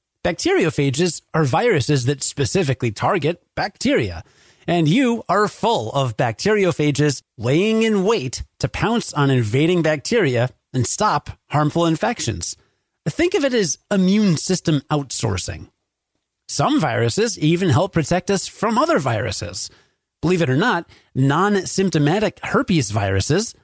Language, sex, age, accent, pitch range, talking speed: English, male, 30-49, American, 125-185 Hz, 120 wpm